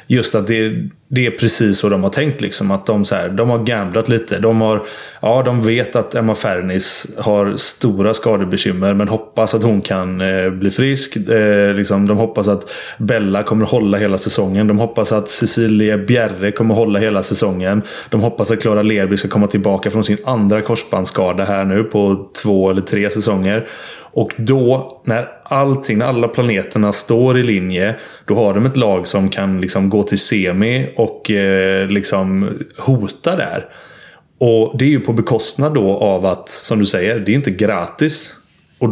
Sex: male